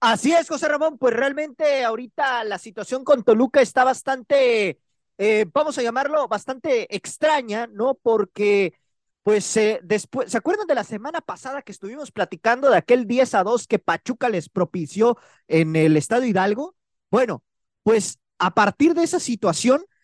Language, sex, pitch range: Spanish, male, 190-270 Hz